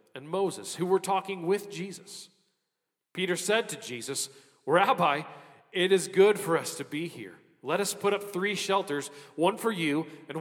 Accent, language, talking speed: American, English, 175 wpm